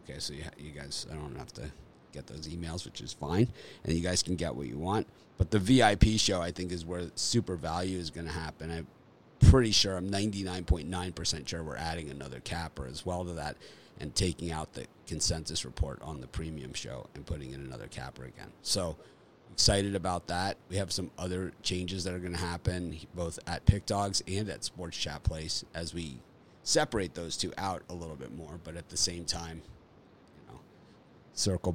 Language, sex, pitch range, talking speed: English, male, 80-95 Hz, 200 wpm